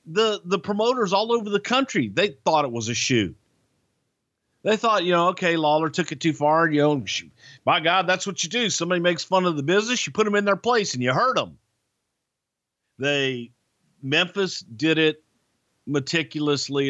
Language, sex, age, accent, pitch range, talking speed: English, male, 50-69, American, 120-155 Hz, 190 wpm